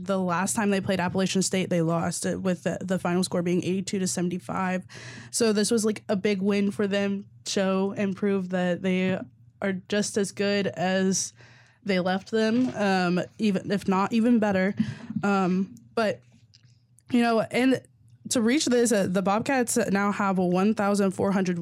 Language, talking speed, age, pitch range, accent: English, 170 wpm, 10-29, 170-205 Hz, American